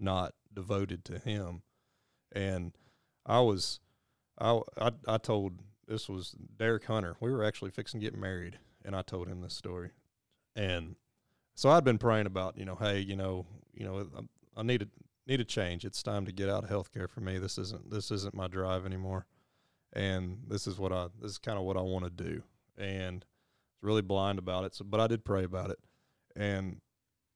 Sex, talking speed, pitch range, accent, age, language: male, 200 wpm, 95-115 Hz, American, 30-49, English